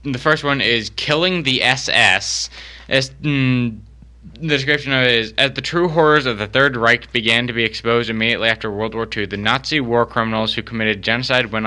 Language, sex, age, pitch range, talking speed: English, male, 20-39, 110-130 Hz, 200 wpm